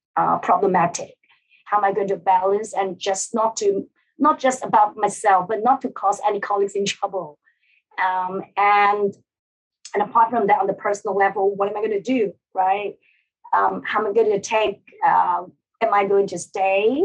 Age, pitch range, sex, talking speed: 30-49, 190-255 Hz, female, 190 wpm